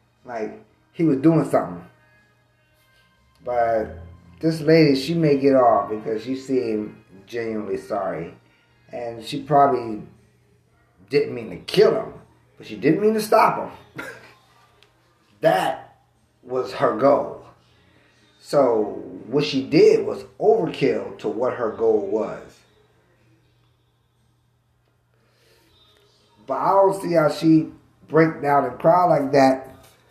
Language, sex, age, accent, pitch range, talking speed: English, male, 30-49, American, 115-155 Hz, 120 wpm